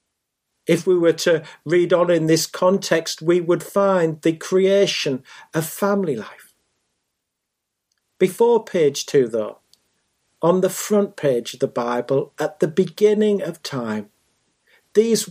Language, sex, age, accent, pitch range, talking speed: English, male, 50-69, British, 165-205 Hz, 135 wpm